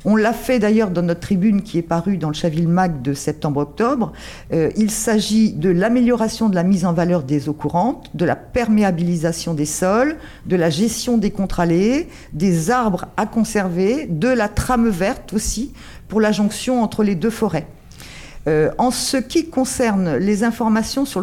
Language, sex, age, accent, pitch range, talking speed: French, female, 50-69, French, 170-220 Hz, 175 wpm